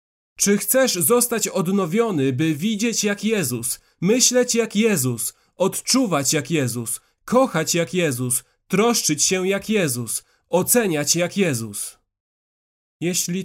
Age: 30-49